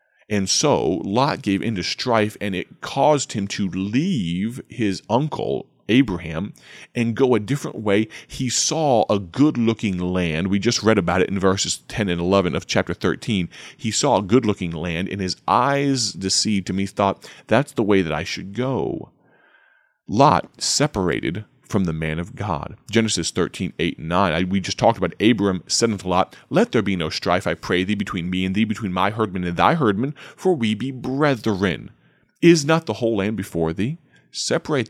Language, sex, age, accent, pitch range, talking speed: English, male, 30-49, American, 95-115 Hz, 185 wpm